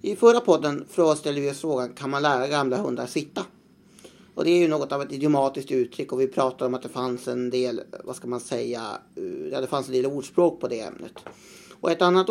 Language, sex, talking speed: Swedish, male, 225 wpm